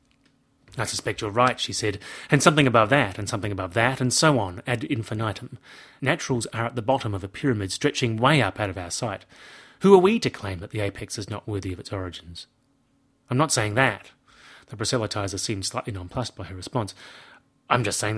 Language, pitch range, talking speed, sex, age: English, 110-140 Hz, 210 wpm, male, 30-49